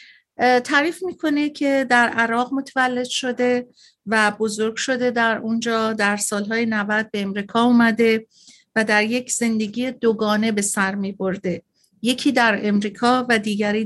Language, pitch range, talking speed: Persian, 210-250 Hz, 135 wpm